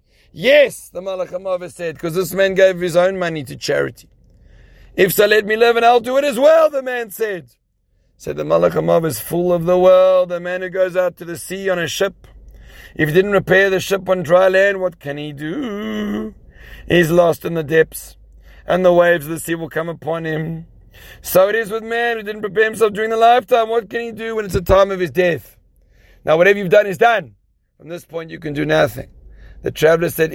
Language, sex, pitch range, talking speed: English, male, 160-215 Hz, 225 wpm